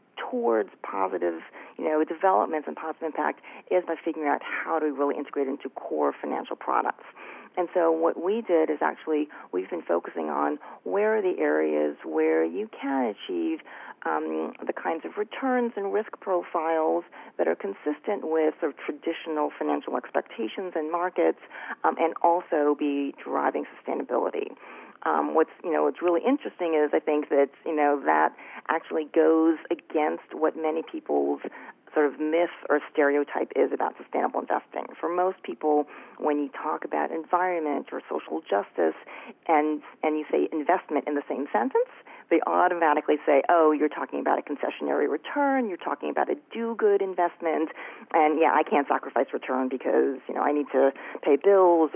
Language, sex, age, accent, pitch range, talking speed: English, female, 40-59, American, 145-180 Hz, 165 wpm